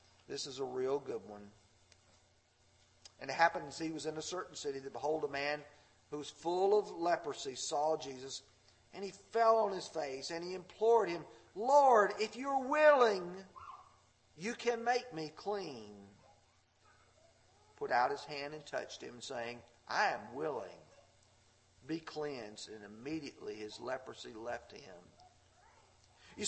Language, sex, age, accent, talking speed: English, male, 50-69, American, 145 wpm